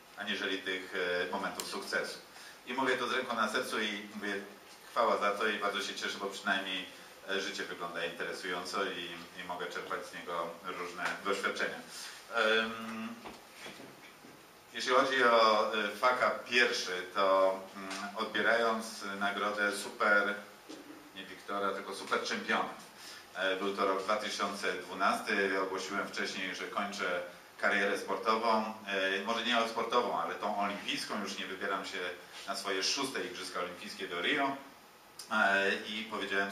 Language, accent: Polish, native